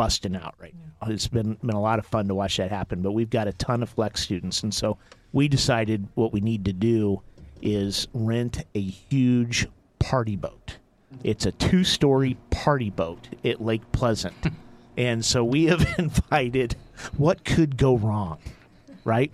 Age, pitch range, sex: 50-69, 105-135 Hz, male